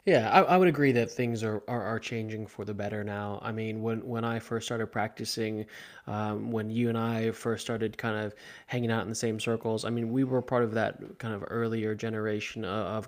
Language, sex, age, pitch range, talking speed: English, male, 20-39, 110-120 Hz, 230 wpm